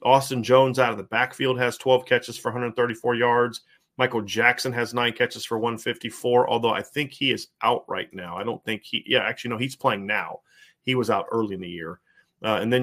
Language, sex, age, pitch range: English, male, 30-49, 115-130 Hz